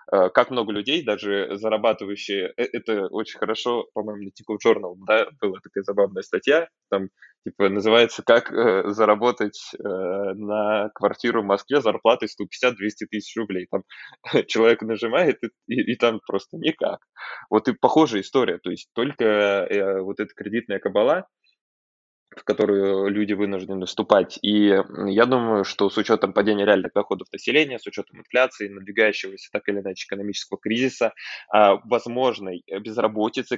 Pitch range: 100-115 Hz